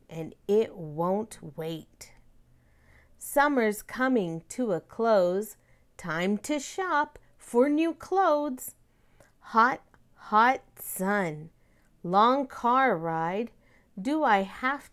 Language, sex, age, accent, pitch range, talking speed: English, female, 40-59, American, 170-265 Hz, 95 wpm